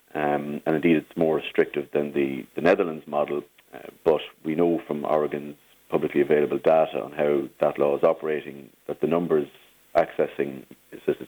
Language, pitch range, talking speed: English, 70-85 Hz, 165 wpm